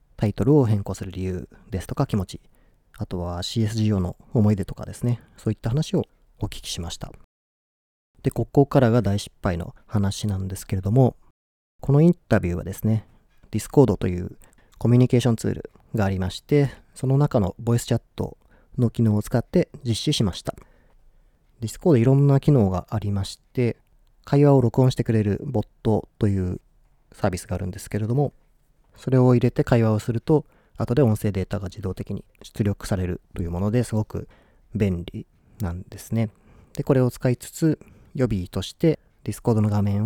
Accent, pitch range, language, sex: native, 95-120 Hz, Japanese, male